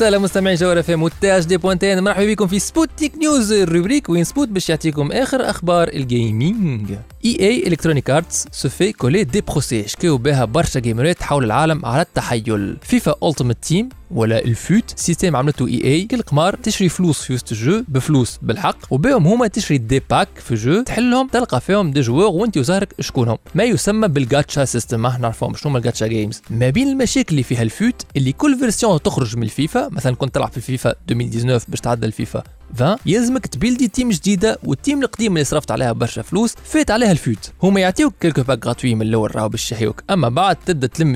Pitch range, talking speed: 125-200 Hz, 180 wpm